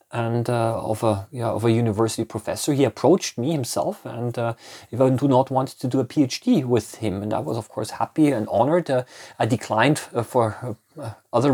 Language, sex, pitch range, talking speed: English, male, 115-150 Hz, 220 wpm